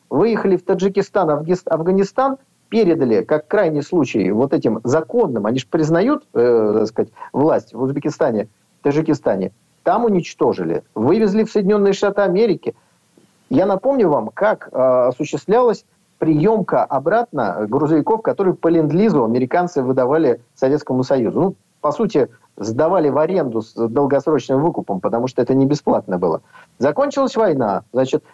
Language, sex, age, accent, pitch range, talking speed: Russian, male, 50-69, native, 150-210 Hz, 130 wpm